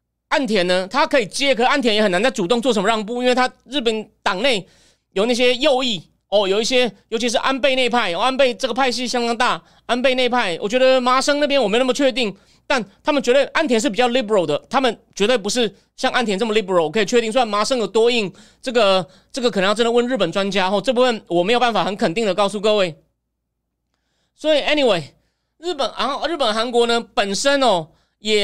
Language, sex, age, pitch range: Chinese, male, 40-59, 205-260 Hz